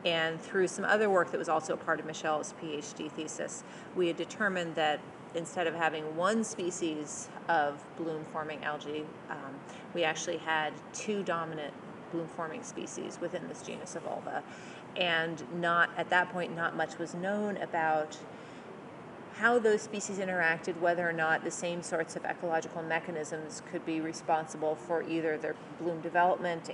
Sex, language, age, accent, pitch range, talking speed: female, English, 30-49, American, 155-175 Hz, 155 wpm